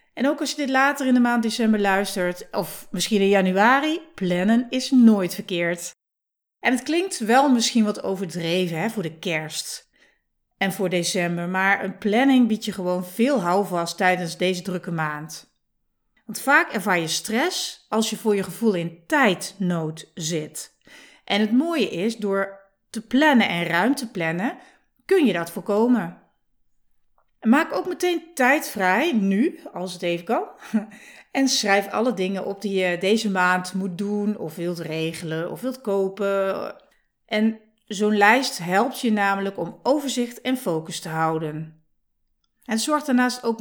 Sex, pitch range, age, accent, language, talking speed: female, 180-245 Hz, 40-59, Dutch, Dutch, 160 wpm